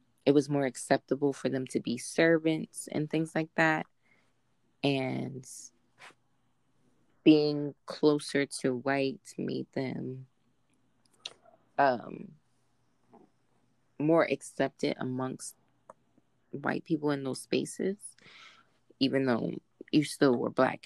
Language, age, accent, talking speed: English, 20-39, American, 100 wpm